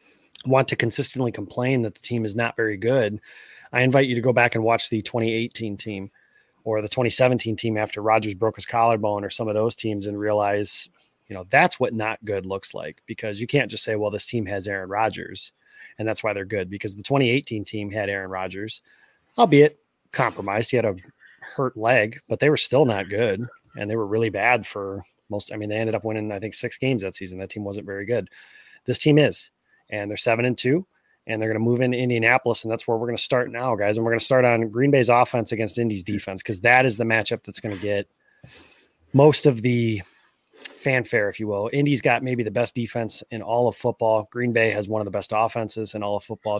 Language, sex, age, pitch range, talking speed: English, male, 30-49, 105-120 Hz, 230 wpm